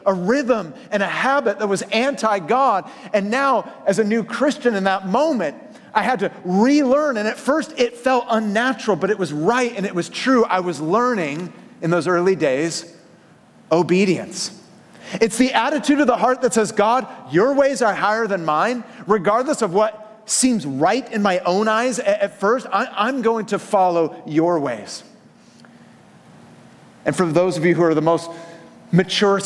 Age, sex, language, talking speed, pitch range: 30-49, male, English, 175 wpm, 175-230 Hz